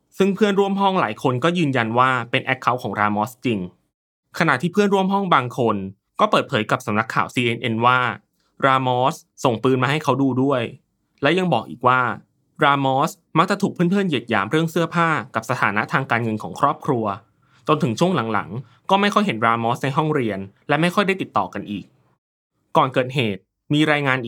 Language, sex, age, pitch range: Thai, male, 20-39, 110-155 Hz